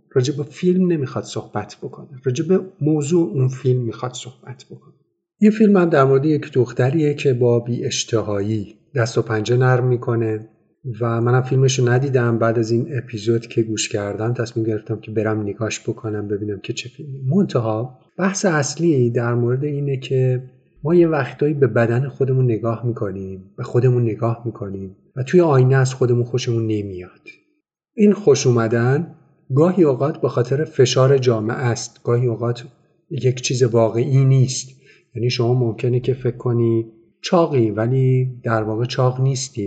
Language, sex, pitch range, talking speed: Arabic, male, 115-140 Hz, 155 wpm